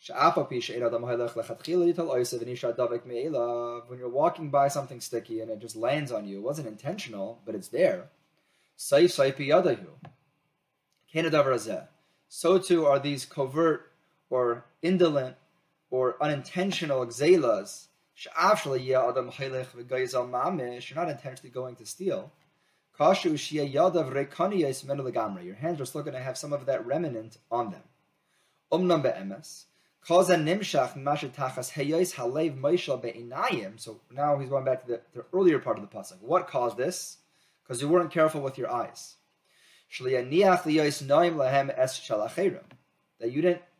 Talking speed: 105 wpm